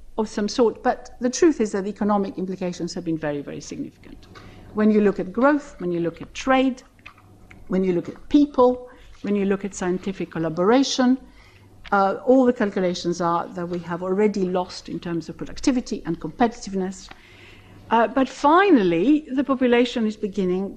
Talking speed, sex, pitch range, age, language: 175 wpm, female, 170-235 Hz, 60-79, English